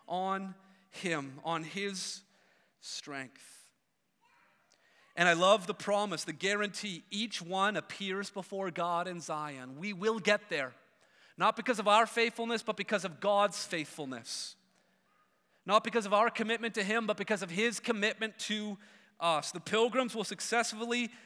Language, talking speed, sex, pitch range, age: English, 145 wpm, male, 180-230 Hz, 30-49